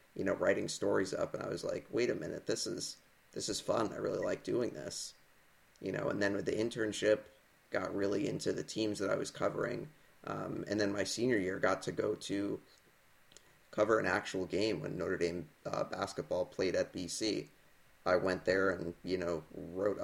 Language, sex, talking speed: English, male, 200 wpm